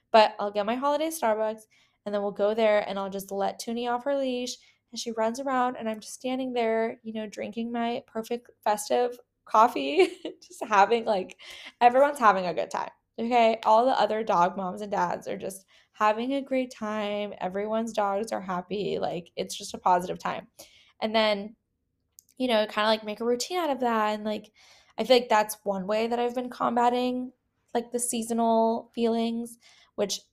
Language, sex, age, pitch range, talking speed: English, female, 10-29, 200-235 Hz, 190 wpm